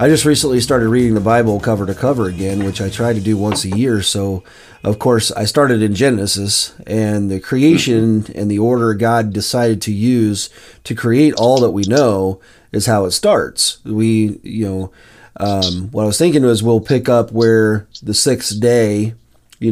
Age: 30-49